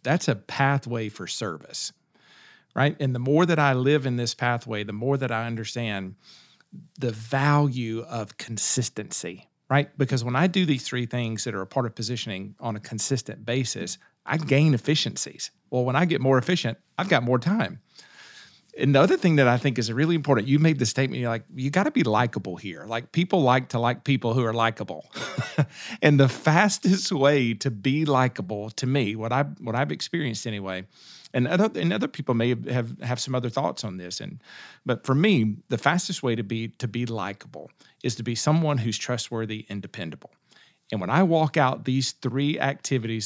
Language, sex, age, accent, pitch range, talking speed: English, male, 40-59, American, 115-145 Hz, 200 wpm